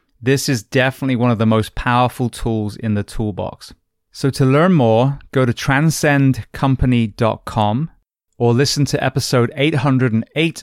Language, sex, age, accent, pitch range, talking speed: English, male, 20-39, British, 115-145 Hz, 135 wpm